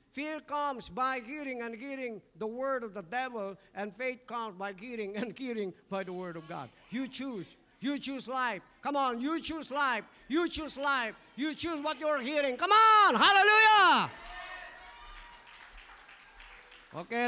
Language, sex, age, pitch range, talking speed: English, male, 50-69, 220-285 Hz, 155 wpm